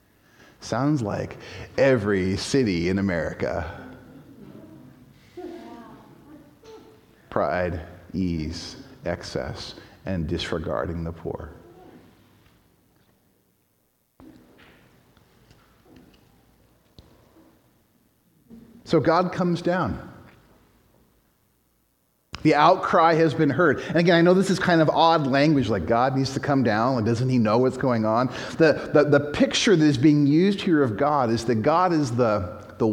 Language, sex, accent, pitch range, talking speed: English, male, American, 105-165 Hz, 115 wpm